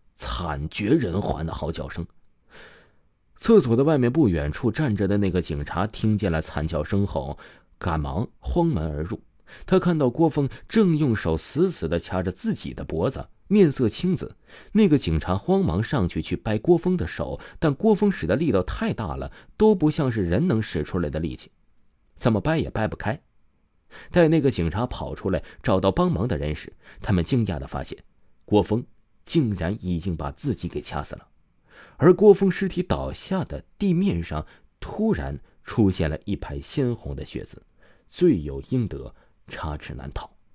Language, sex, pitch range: Chinese, male, 80-130 Hz